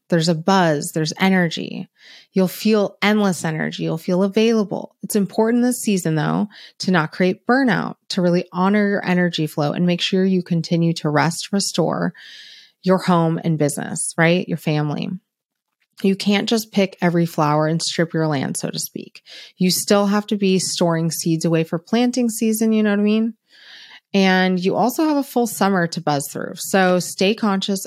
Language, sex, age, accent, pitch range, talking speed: English, female, 30-49, American, 165-215 Hz, 180 wpm